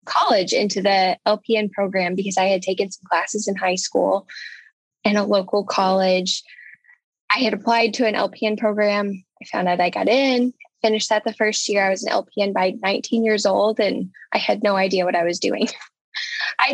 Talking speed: 195 wpm